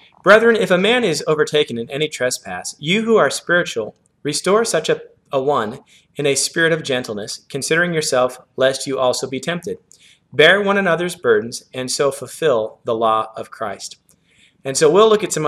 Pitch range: 120-170 Hz